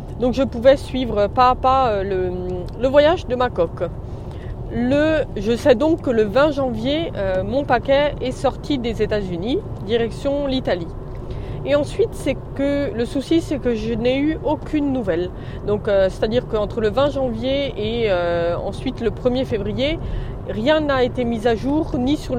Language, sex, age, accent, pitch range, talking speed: French, female, 20-39, French, 200-275 Hz, 170 wpm